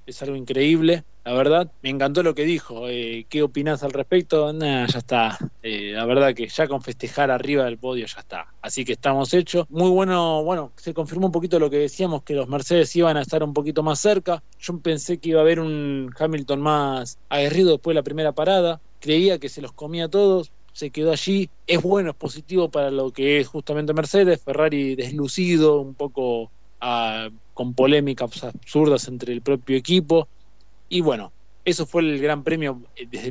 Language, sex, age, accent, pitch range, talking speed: Spanish, male, 20-39, Argentinian, 135-165 Hz, 195 wpm